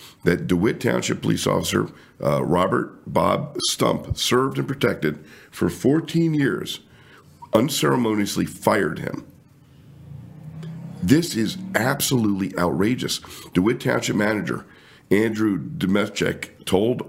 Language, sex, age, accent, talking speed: English, male, 50-69, American, 100 wpm